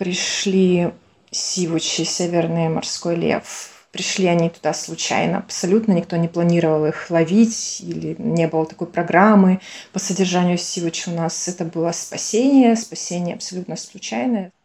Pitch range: 170-215 Hz